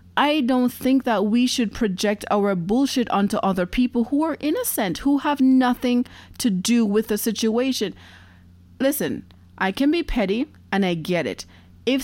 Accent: American